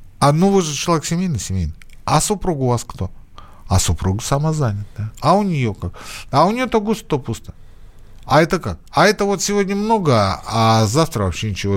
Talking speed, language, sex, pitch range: 200 wpm, Russian, male, 95-150 Hz